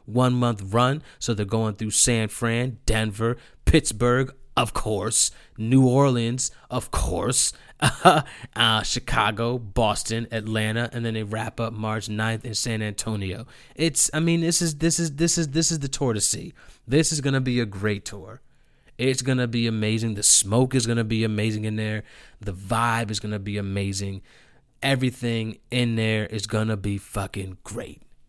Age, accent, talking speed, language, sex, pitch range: 30-49, American, 170 wpm, English, male, 110-125 Hz